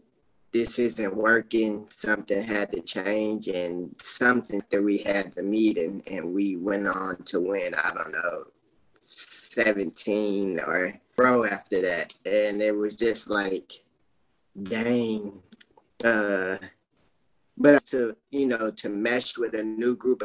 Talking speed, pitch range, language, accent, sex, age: 135 wpm, 100-115 Hz, English, American, male, 20-39